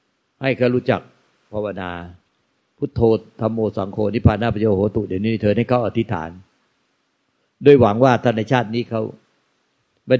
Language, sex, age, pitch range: Thai, male, 60-79, 110-145 Hz